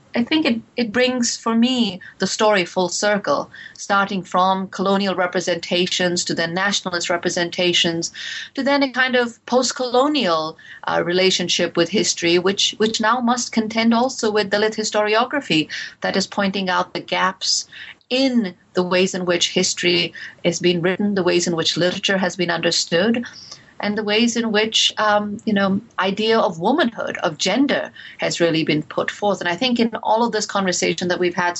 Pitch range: 175-215 Hz